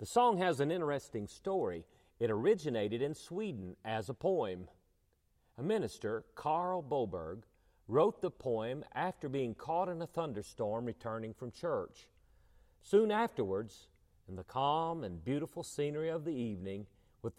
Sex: male